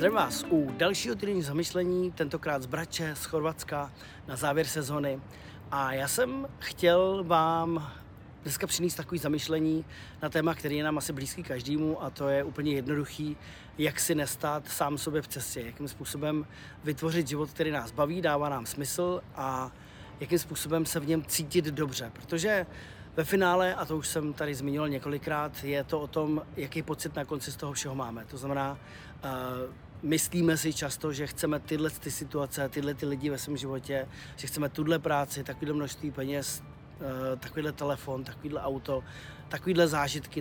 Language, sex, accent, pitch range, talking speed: Czech, male, native, 140-160 Hz, 165 wpm